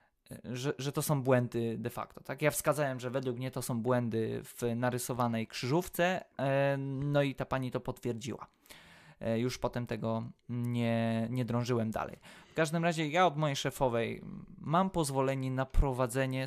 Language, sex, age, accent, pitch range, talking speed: Polish, male, 20-39, native, 120-140 Hz, 155 wpm